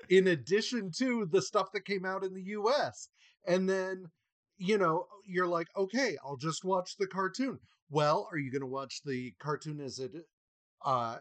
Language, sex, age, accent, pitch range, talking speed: English, male, 40-59, American, 140-200 Hz, 185 wpm